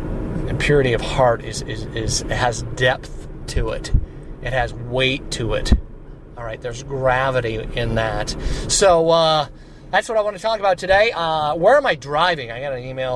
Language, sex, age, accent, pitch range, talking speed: English, male, 30-49, American, 115-135 Hz, 180 wpm